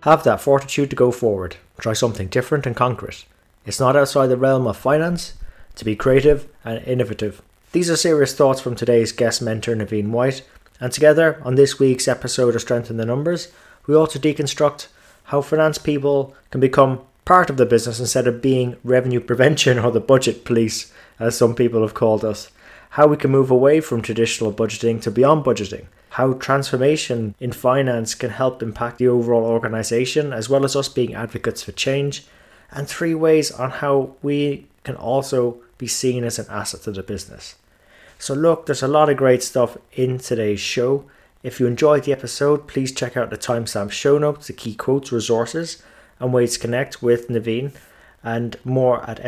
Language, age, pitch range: English, 20-39, 115-140 Hz